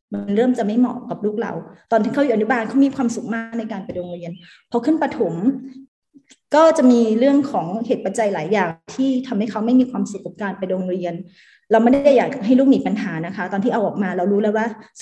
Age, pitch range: 20-39, 200-250 Hz